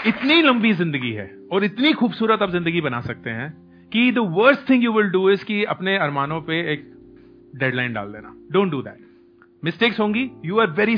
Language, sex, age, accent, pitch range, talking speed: Hindi, male, 30-49, native, 160-210 Hz, 130 wpm